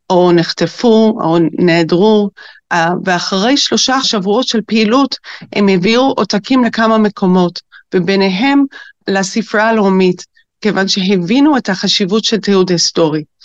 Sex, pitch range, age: female, 185-225 Hz, 40-59